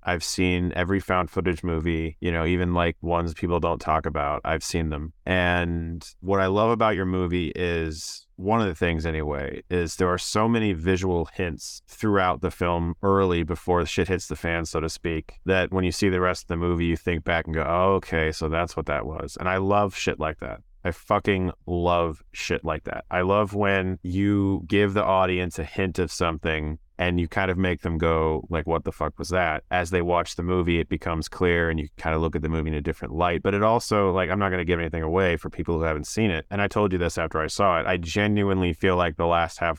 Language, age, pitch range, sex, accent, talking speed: English, 30-49, 80-95 Hz, male, American, 240 wpm